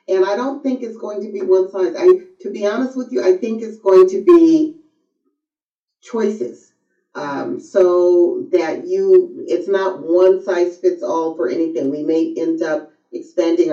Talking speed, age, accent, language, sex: 175 wpm, 40-59, American, English, female